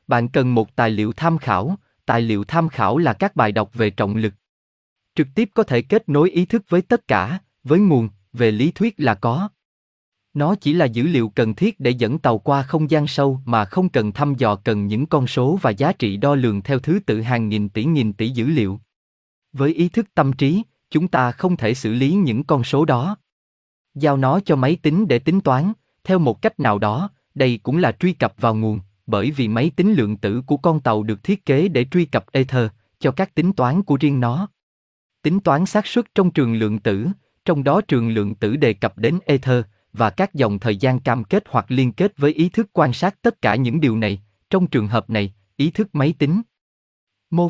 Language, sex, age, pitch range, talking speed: Vietnamese, male, 20-39, 110-170 Hz, 225 wpm